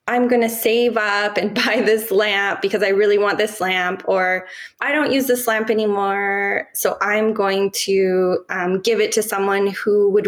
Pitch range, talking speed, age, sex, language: 195-250 Hz, 195 wpm, 20-39, female, English